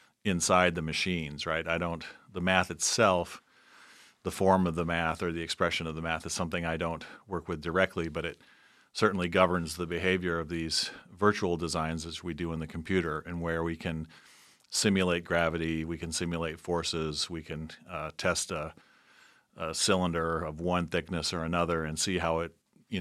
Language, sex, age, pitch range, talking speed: English, male, 40-59, 80-90 Hz, 185 wpm